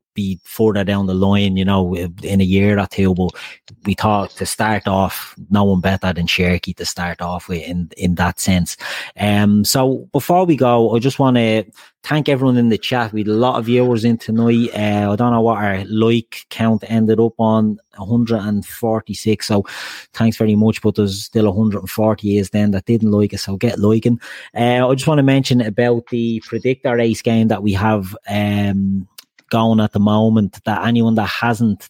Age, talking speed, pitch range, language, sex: 30-49, 195 wpm, 100-115 Hz, English, male